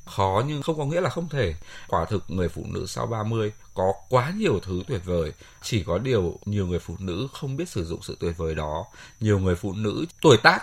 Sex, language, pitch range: male, Vietnamese, 85-130 Hz